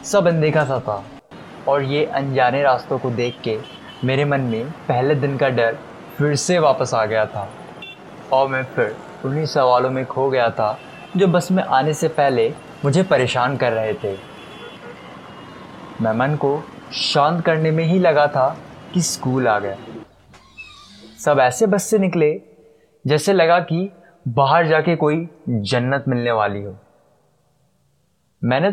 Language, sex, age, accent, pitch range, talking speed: Hindi, male, 20-39, native, 125-170 Hz, 150 wpm